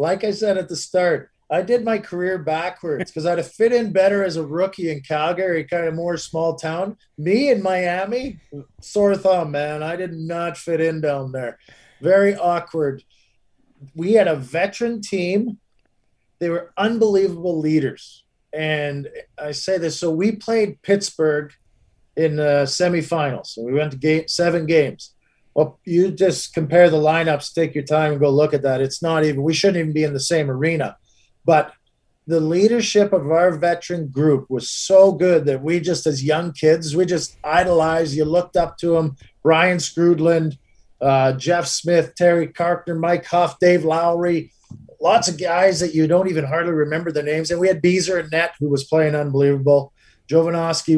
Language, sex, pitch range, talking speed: English, male, 150-180 Hz, 180 wpm